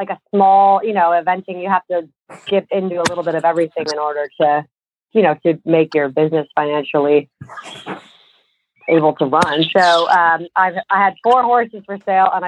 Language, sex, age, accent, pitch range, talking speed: English, female, 30-49, American, 160-185 Hz, 190 wpm